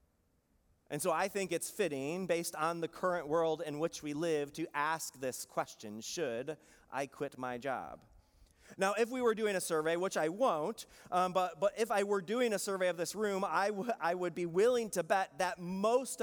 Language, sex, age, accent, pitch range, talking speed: English, male, 30-49, American, 145-185 Hz, 205 wpm